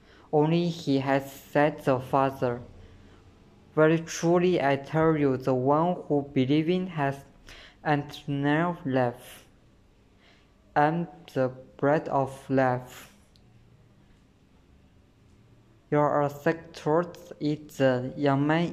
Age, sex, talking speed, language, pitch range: 20-39, female, 95 wpm, English, 115-150 Hz